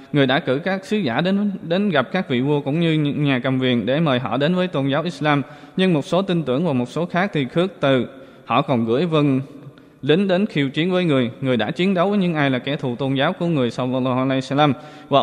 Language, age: Vietnamese, 20-39